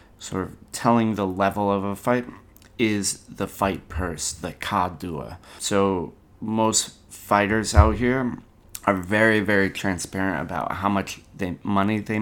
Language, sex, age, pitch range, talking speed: English, male, 30-49, 95-110 Hz, 140 wpm